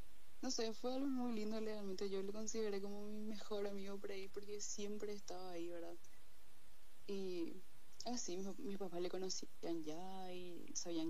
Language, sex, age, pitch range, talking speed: Spanish, female, 20-39, 170-205 Hz, 175 wpm